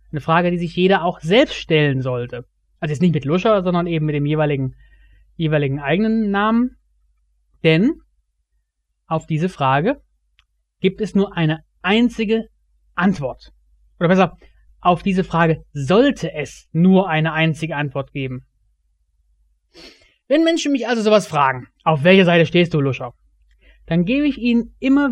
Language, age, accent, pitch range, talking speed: German, 30-49, German, 130-220 Hz, 145 wpm